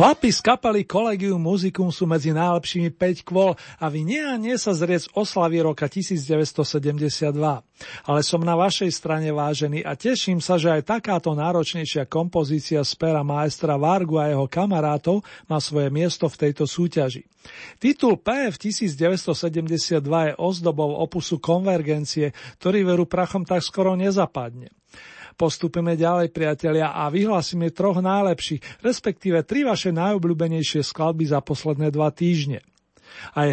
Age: 40-59